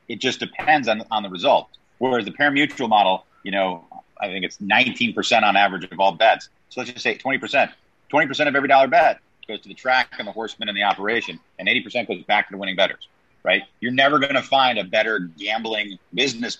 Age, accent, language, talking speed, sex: 40-59, American, English, 230 wpm, male